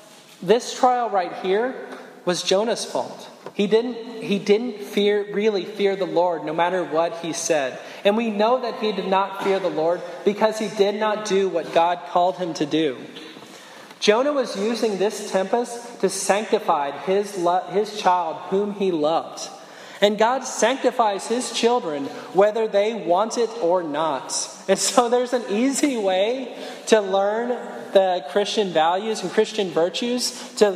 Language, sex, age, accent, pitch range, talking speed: English, male, 20-39, American, 185-220 Hz, 160 wpm